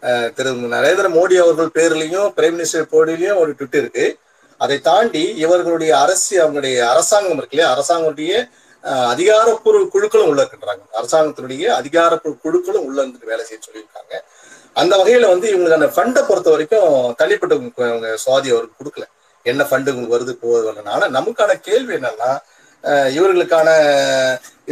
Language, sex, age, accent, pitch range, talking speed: Tamil, male, 30-49, native, 135-230 Hz, 125 wpm